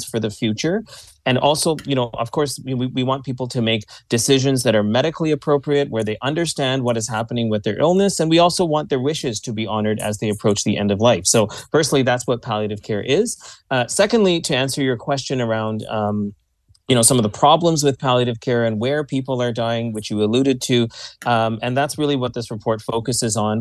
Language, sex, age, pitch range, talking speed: English, male, 30-49, 115-140 Hz, 220 wpm